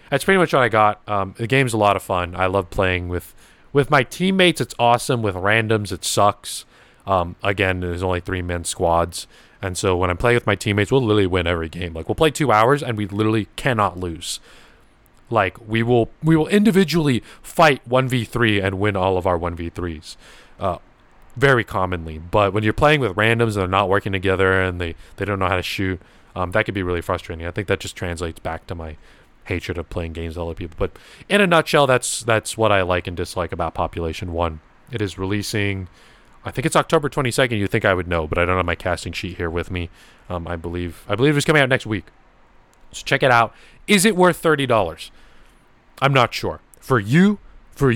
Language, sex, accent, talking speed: English, male, American, 220 wpm